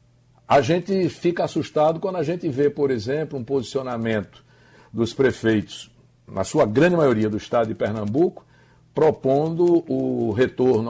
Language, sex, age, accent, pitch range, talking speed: Portuguese, male, 60-79, Brazilian, 120-155 Hz, 140 wpm